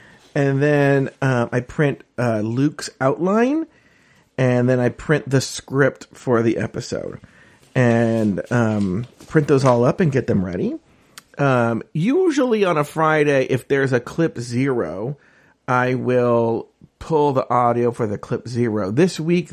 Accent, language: American, English